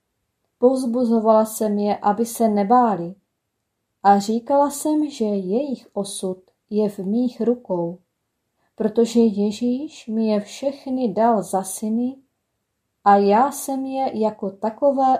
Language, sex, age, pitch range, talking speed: Czech, female, 30-49, 200-250 Hz, 120 wpm